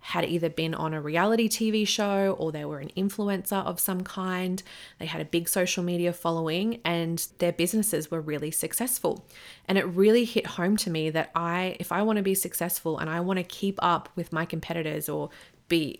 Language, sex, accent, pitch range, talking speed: English, female, Australian, 160-185 Hz, 205 wpm